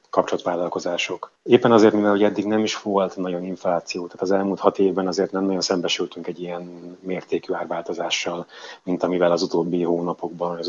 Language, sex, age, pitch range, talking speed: Hungarian, male, 30-49, 85-100 Hz, 170 wpm